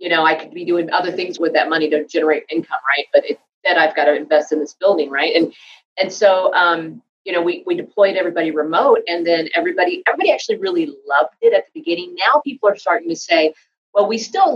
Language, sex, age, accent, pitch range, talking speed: English, female, 40-59, American, 150-195 Hz, 235 wpm